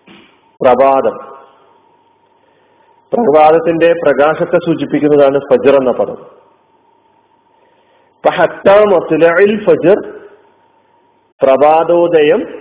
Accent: native